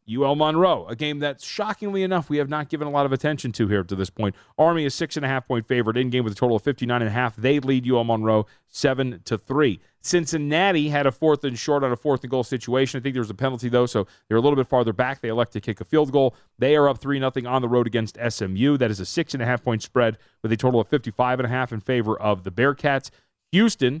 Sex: male